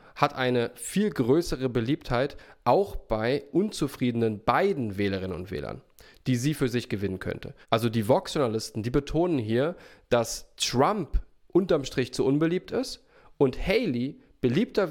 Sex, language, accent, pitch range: male, English, German, 115-150 Hz